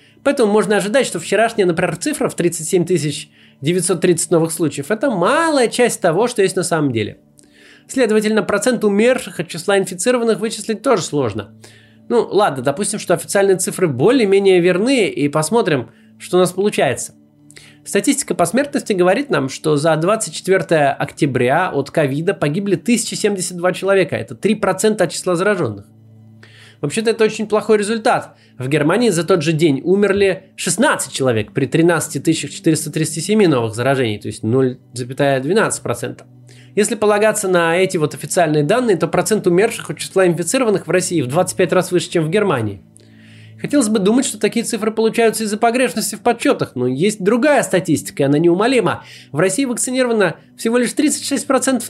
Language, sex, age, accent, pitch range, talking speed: Russian, male, 20-39, native, 145-215 Hz, 150 wpm